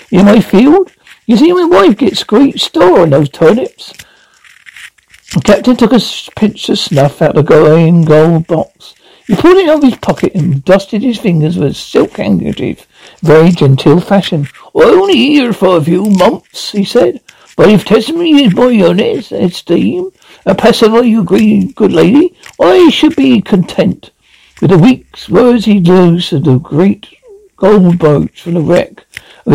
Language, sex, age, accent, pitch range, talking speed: English, male, 60-79, British, 165-250 Hz, 170 wpm